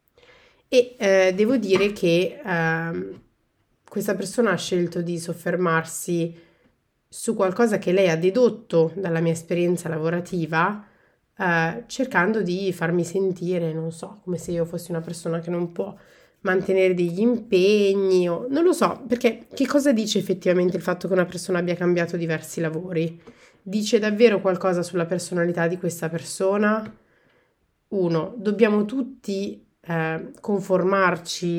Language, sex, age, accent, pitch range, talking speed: Italian, female, 30-49, native, 170-195 Hz, 135 wpm